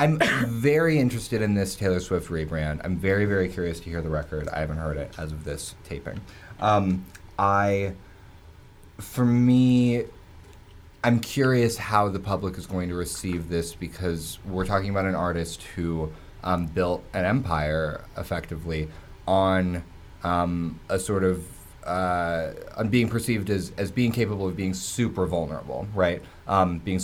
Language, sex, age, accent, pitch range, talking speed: English, male, 20-39, American, 85-100 Hz, 155 wpm